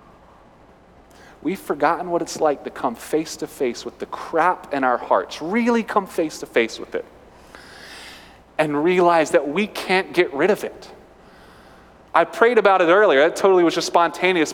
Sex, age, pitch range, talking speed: male, 30-49, 165-225 Hz, 175 wpm